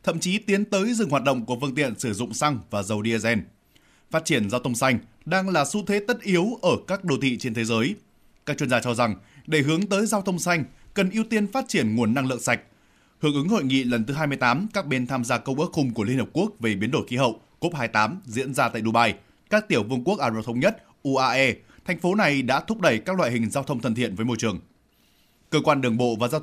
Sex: male